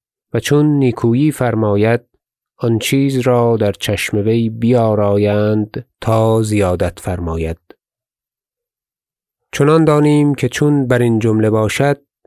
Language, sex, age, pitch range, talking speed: Persian, male, 30-49, 110-140 Hz, 105 wpm